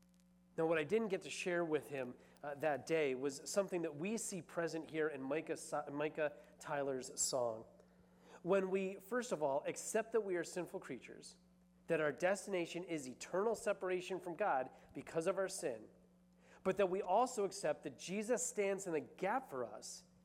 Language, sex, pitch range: English, male, 150-190 Hz